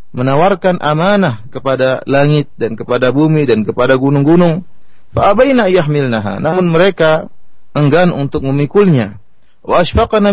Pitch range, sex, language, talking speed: 125-170 Hz, male, Indonesian, 105 wpm